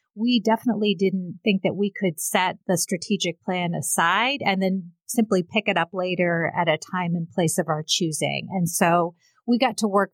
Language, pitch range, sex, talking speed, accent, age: English, 175-210 Hz, female, 195 wpm, American, 30-49